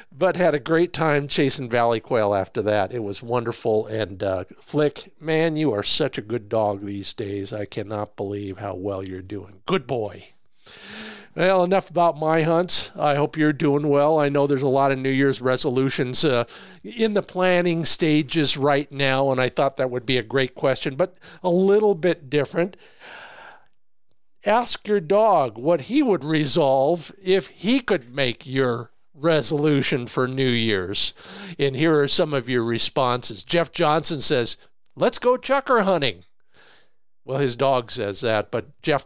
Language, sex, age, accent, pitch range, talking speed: English, male, 50-69, American, 125-170 Hz, 170 wpm